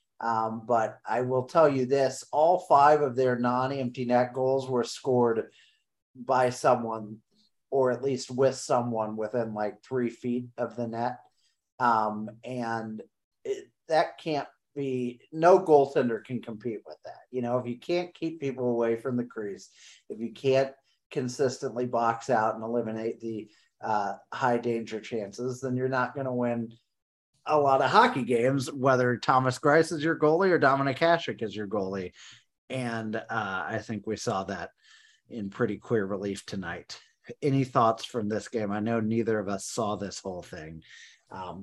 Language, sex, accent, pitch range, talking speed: English, male, American, 110-130 Hz, 165 wpm